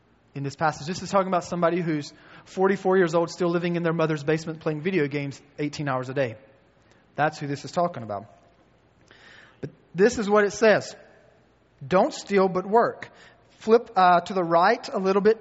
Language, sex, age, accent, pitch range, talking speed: English, male, 30-49, American, 145-190 Hz, 190 wpm